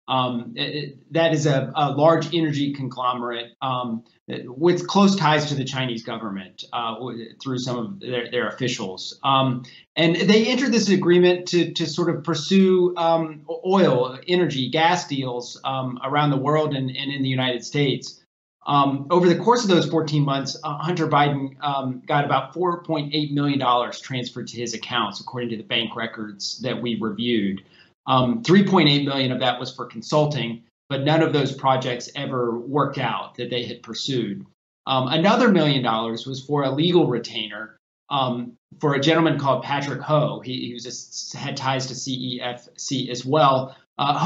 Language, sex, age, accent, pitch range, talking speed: English, male, 30-49, American, 120-155 Hz, 170 wpm